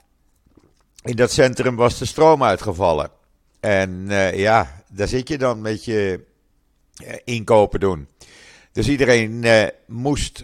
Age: 50-69